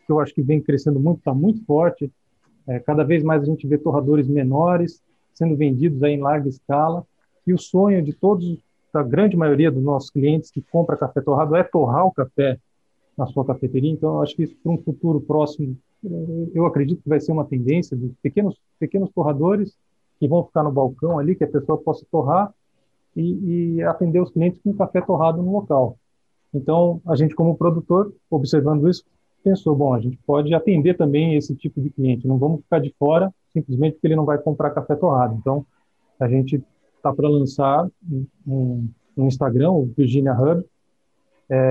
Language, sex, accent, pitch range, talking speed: Portuguese, male, Brazilian, 145-170 Hz, 190 wpm